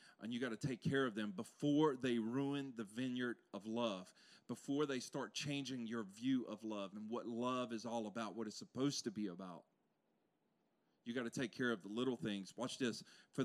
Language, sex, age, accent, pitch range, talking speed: English, male, 40-59, American, 125-185 Hz, 210 wpm